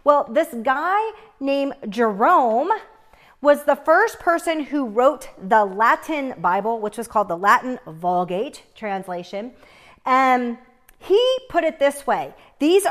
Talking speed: 130 wpm